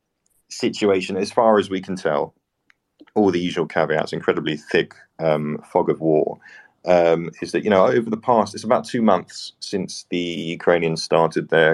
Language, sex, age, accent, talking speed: English, male, 40-59, British, 175 wpm